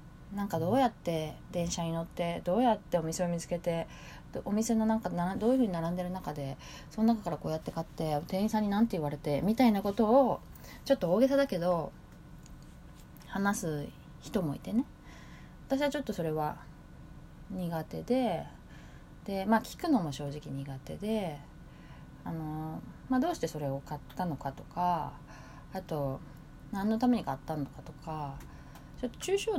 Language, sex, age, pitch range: Japanese, female, 20-39, 150-215 Hz